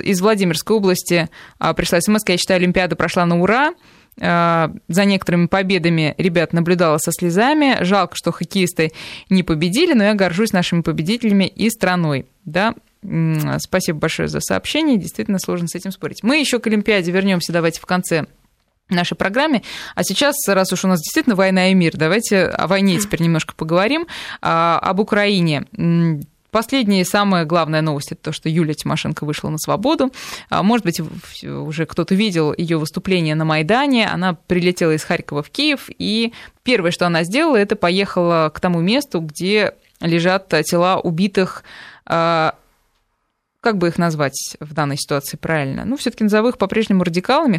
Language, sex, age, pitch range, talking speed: Russian, female, 20-39, 165-210 Hz, 160 wpm